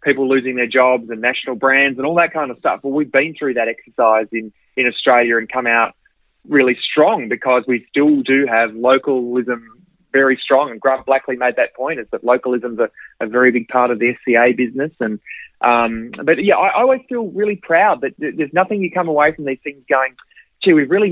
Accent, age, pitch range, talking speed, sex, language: Australian, 20-39, 120-150 Hz, 220 wpm, male, English